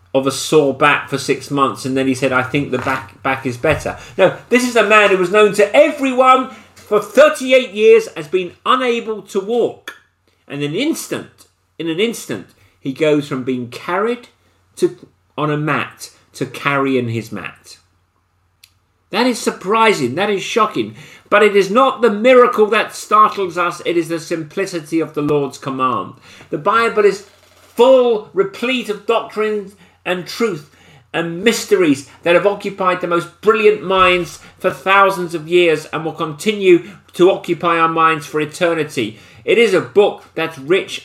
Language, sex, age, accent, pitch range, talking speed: English, male, 40-59, British, 135-210 Hz, 170 wpm